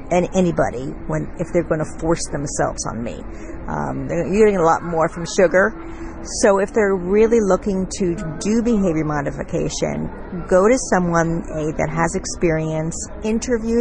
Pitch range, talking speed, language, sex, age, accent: 165-205 Hz, 155 wpm, English, female, 50-69, American